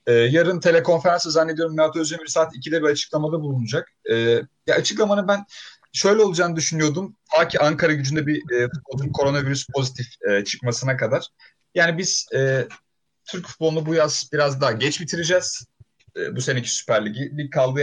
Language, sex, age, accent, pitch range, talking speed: Turkish, male, 30-49, native, 120-165 Hz, 155 wpm